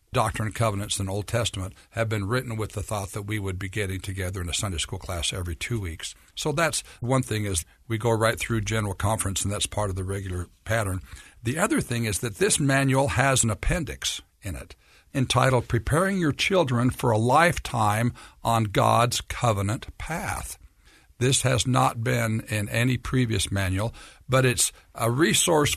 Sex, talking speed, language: male, 185 wpm, English